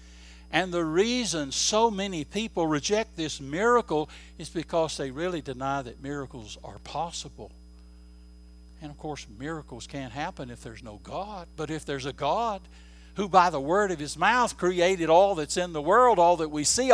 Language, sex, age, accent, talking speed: English, male, 60-79, American, 175 wpm